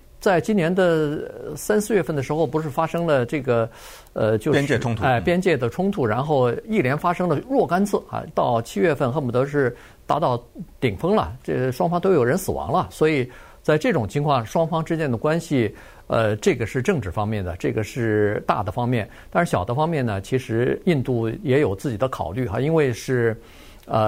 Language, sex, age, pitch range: Chinese, male, 50-69, 115-165 Hz